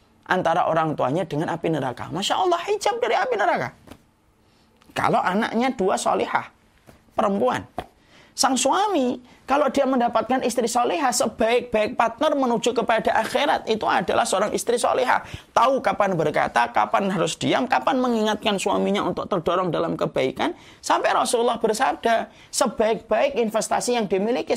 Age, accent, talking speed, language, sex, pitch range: 30-49, native, 130 wpm, Indonesian, male, 155-255 Hz